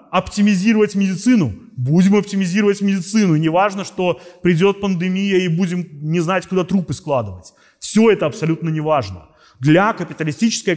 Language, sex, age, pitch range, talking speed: Russian, male, 30-49, 150-195 Hz, 130 wpm